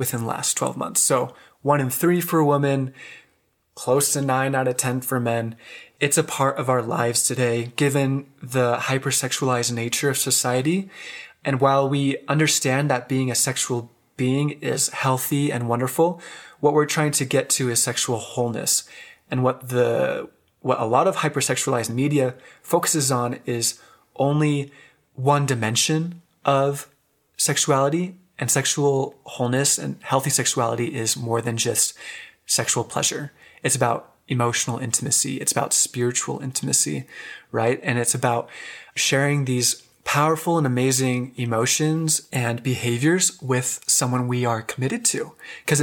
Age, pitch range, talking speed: 20-39, 125-145 Hz, 145 wpm